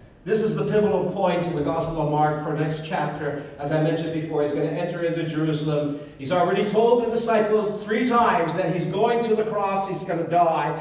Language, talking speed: English, 230 wpm